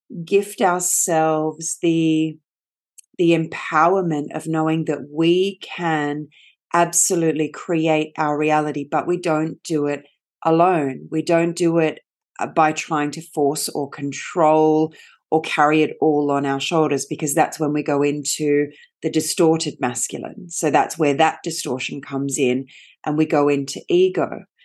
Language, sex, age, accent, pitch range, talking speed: English, female, 30-49, Australian, 145-170 Hz, 140 wpm